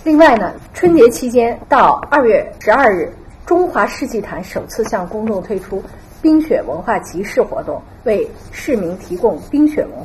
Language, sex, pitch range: Chinese, female, 185-250 Hz